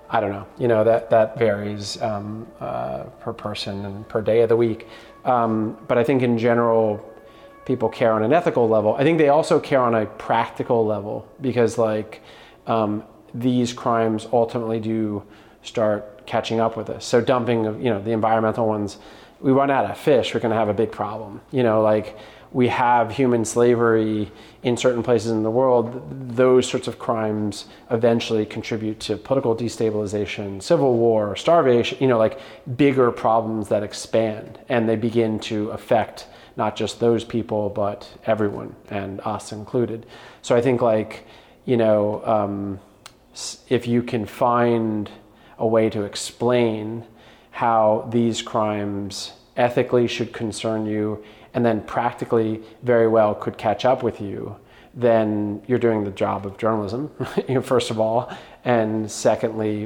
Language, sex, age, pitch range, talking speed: English, male, 30-49, 105-120 Hz, 160 wpm